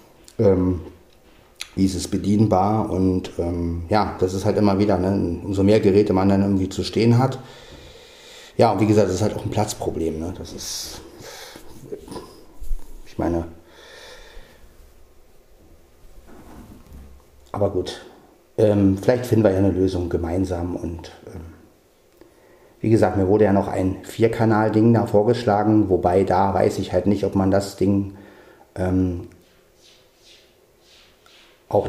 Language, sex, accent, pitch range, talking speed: German, male, German, 90-105 Hz, 135 wpm